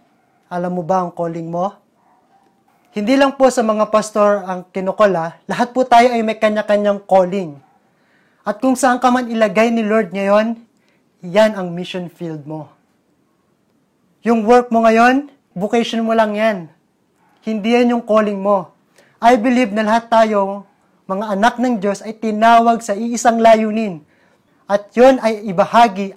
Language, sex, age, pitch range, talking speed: Filipino, male, 20-39, 175-220 Hz, 150 wpm